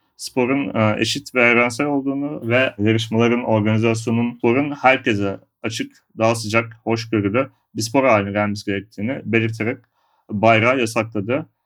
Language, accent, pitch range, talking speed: Turkish, native, 110-125 Hz, 120 wpm